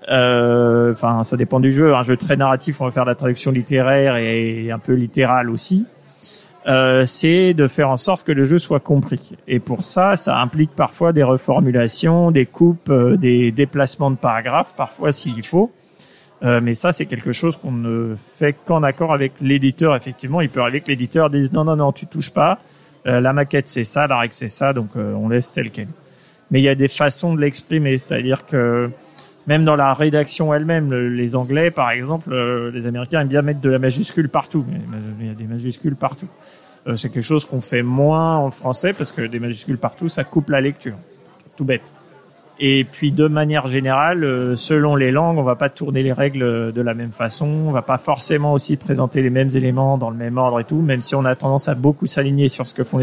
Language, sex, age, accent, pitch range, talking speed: French, male, 40-59, French, 125-155 Hz, 220 wpm